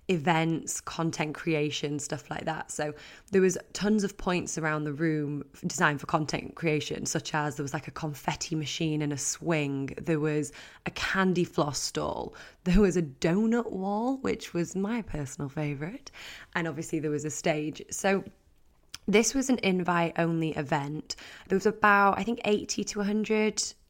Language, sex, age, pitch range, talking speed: English, female, 20-39, 150-190 Hz, 170 wpm